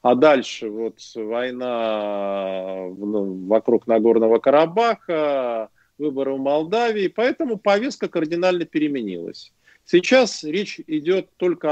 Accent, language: native, Russian